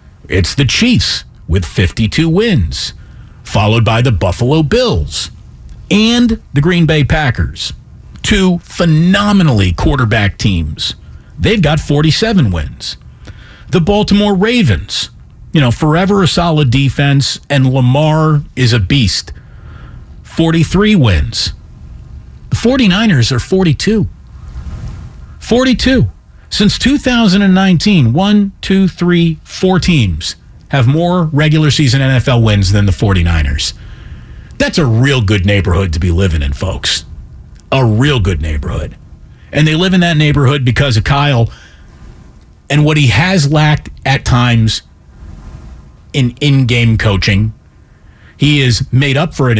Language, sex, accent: English, male, American